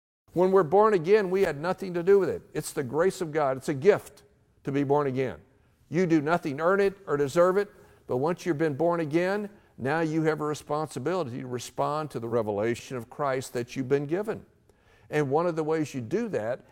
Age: 60-79